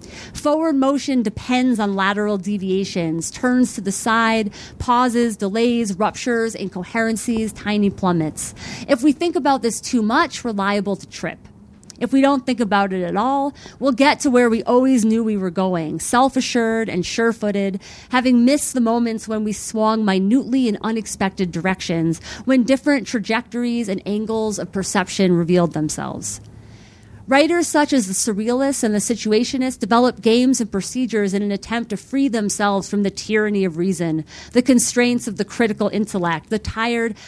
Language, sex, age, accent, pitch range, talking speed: English, female, 30-49, American, 195-245 Hz, 160 wpm